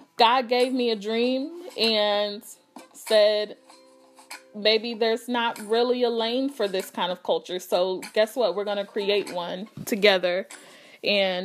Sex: female